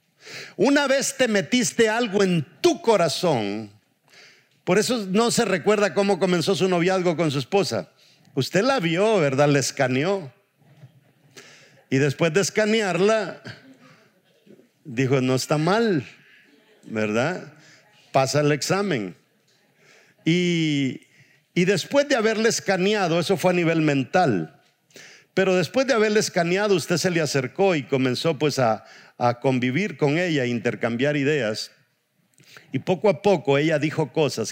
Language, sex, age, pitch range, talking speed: English, male, 50-69, 135-195 Hz, 130 wpm